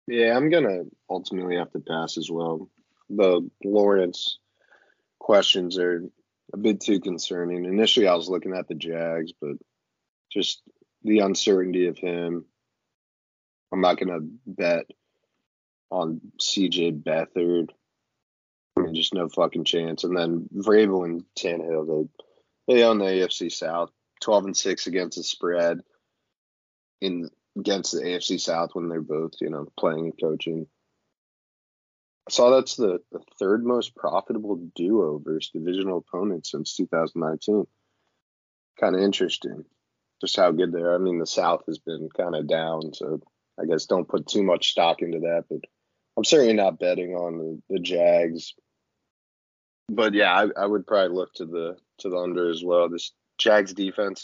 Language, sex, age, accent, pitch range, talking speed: English, male, 20-39, American, 80-90 Hz, 155 wpm